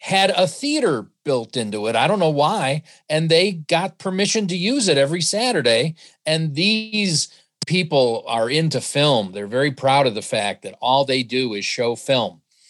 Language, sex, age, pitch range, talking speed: English, male, 40-59, 140-190 Hz, 180 wpm